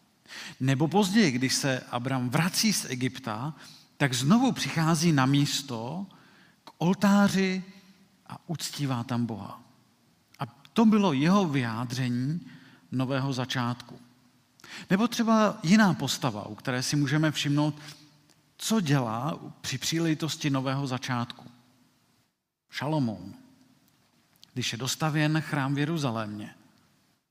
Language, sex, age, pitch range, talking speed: Czech, male, 50-69, 130-170 Hz, 105 wpm